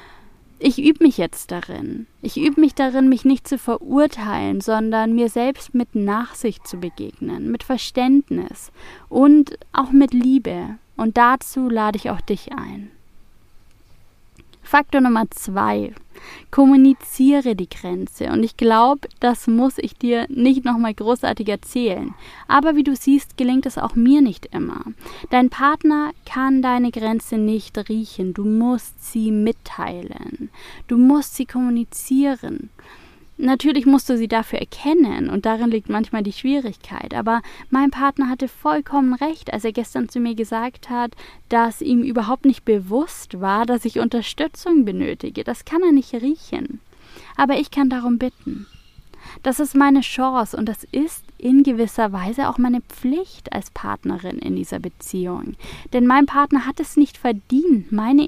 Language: German